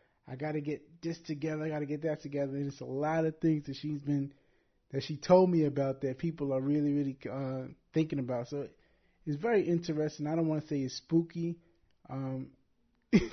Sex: male